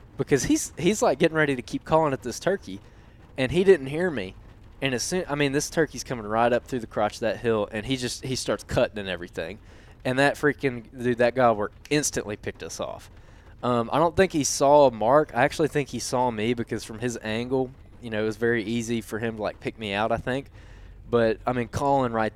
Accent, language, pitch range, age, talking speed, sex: American, English, 110-140 Hz, 20-39, 240 wpm, male